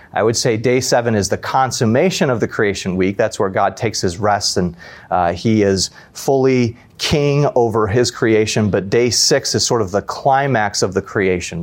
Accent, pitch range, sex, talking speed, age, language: American, 105-120 Hz, male, 195 wpm, 30-49, English